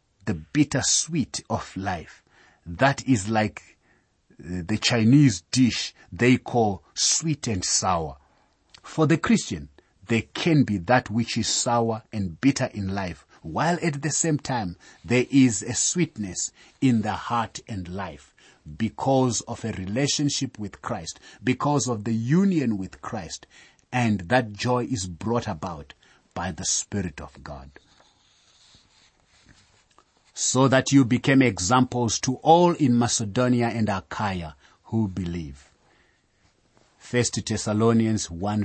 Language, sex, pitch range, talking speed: English, male, 95-130 Hz, 130 wpm